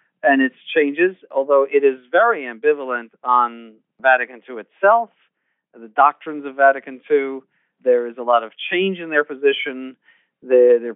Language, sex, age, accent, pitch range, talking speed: English, male, 40-59, American, 120-160 Hz, 150 wpm